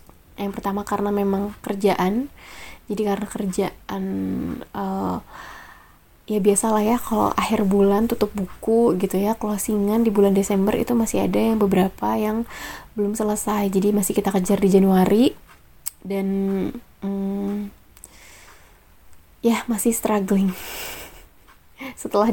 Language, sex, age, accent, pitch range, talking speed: Indonesian, female, 20-39, native, 195-230 Hz, 120 wpm